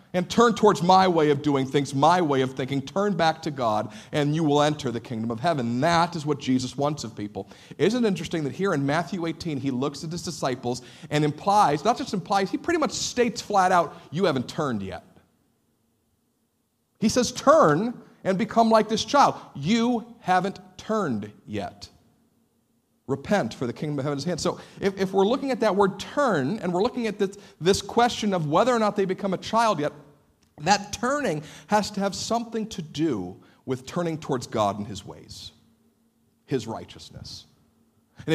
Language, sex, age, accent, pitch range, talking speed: English, male, 50-69, American, 145-200 Hz, 190 wpm